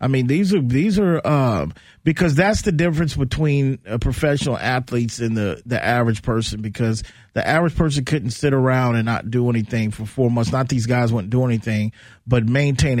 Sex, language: male, English